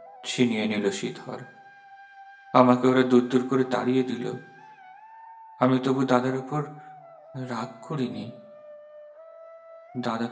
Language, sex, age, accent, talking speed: Bengali, male, 50-69, native, 70 wpm